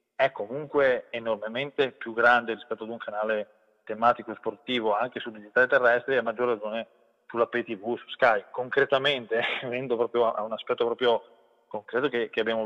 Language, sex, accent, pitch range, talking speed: Italian, male, native, 110-130 Hz, 165 wpm